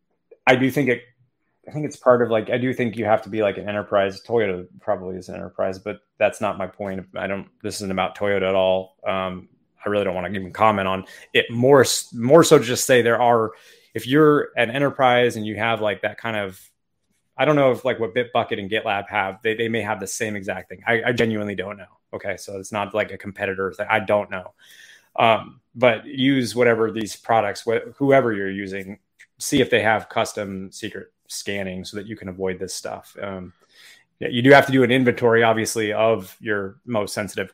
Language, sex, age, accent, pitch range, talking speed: English, male, 20-39, American, 100-120 Hz, 220 wpm